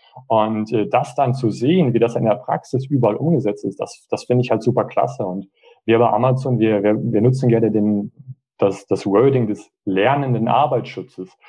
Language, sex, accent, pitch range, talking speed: German, male, German, 110-130 Hz, 190 wpm